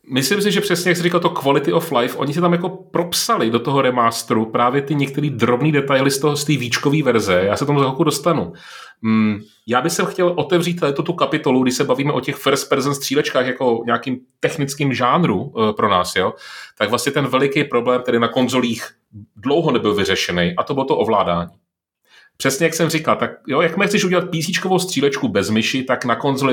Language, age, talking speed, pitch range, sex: Czech, 30-49, 200 wpm, 115-155 Hz, male